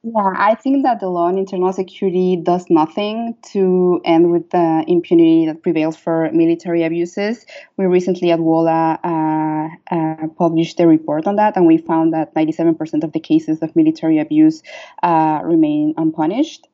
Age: 20-39